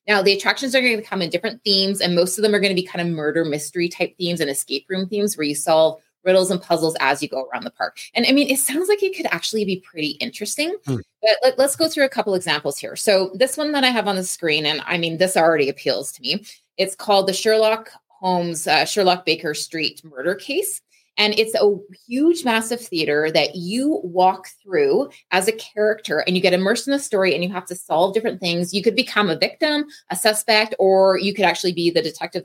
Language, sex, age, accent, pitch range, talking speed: English, female, 20-39, American, 170-225 Hz, 240 wpm